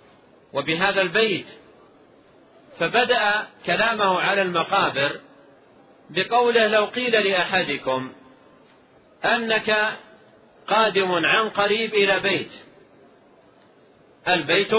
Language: Arabic